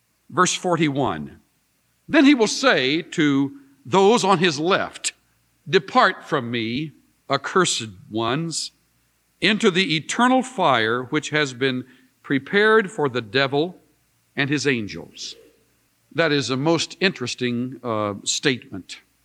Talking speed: 115 wpm